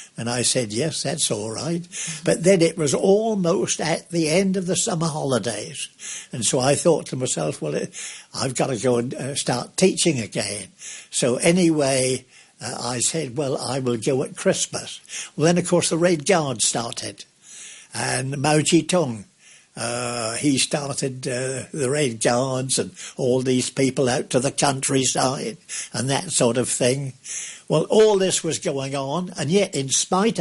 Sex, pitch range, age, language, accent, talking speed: male, 125-170 Hz, 60-79, English, British, 170 wpm